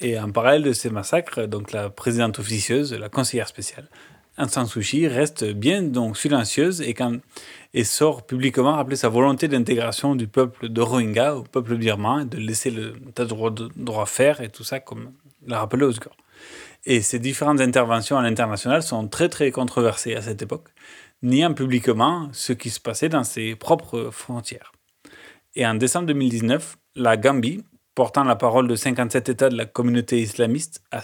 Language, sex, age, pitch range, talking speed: French, male, 30-49, 115-140 Hz, 175 wpm